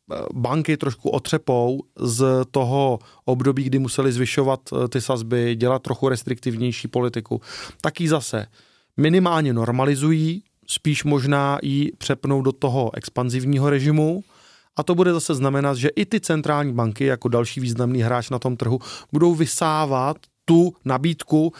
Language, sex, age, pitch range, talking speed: Slovak, male, 30-49, 125-150 Hz, 135 wpm